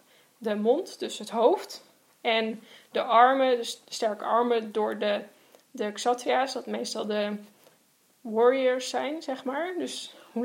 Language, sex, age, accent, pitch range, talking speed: Dutch, female, 10-29, Dutch, 225-255 Hz, 145 wpm